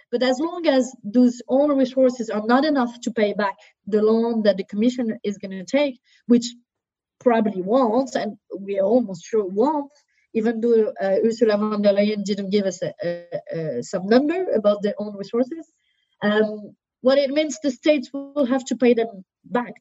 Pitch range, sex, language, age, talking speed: 215-275 Hz, female, English, 30-49, 175 wpm